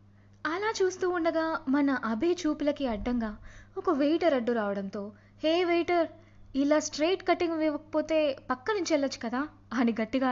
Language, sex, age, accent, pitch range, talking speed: Telugu, female, 20-39, native, 210-330 Hz, 130 wpm